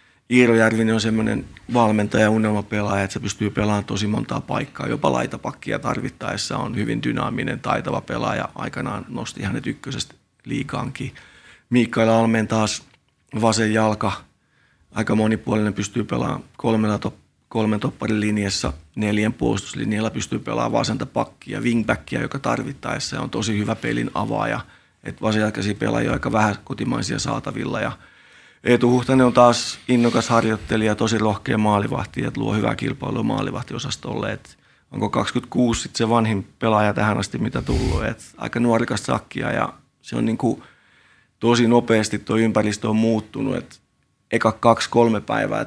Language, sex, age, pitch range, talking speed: Finnish, male, 30-49, 105-115 Hz, 135 wpm